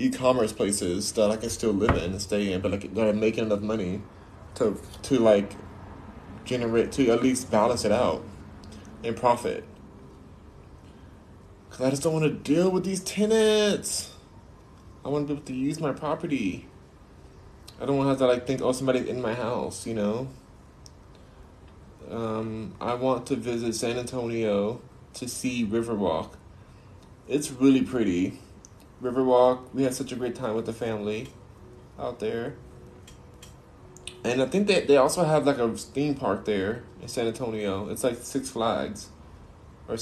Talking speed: 160 wpm